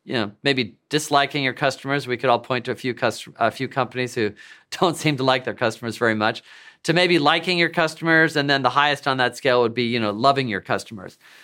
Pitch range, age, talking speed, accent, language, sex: 120-150 Hz, 40-59, 235 wpm, American, English, male